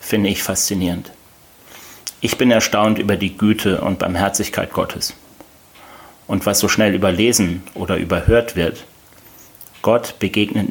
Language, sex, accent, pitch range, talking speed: German, male, German, 95-110 Hz, 125 wpm